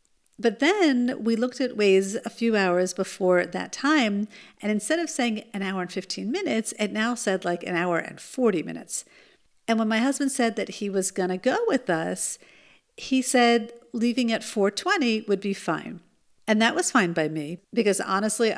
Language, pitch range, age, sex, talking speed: English, 195-240 Hz, 50-69, female, 185 wpm